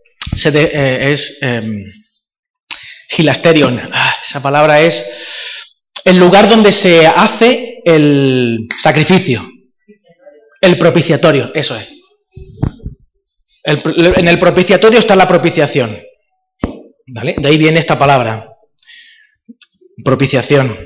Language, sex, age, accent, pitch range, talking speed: Spanish, male, 30-49, Spanish, 150-220 Hz, 100 wpm